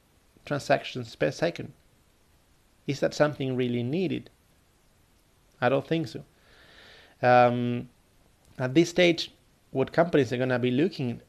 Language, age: Dutch, 30-49